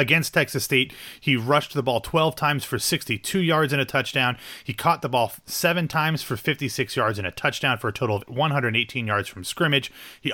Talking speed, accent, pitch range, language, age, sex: 210 wpm, American, 115-135 Hz, English, 30-49, male